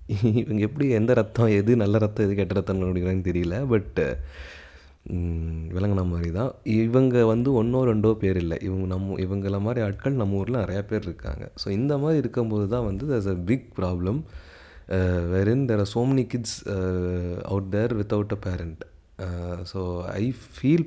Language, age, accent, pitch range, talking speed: Tamil, 30-49, native, 90-120 Hz, 160 wpm